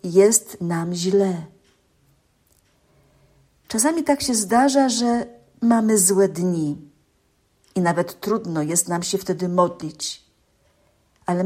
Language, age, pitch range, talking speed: Polish, 50-69, 190-245 Hz, 105 wpm